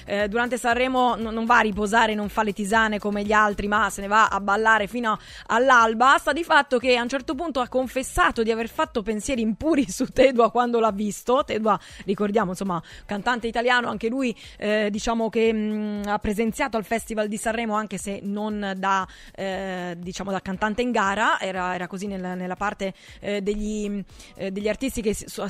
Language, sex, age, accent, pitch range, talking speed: Italian, female, 20-39, native, 205-245 Hz, 190 wpm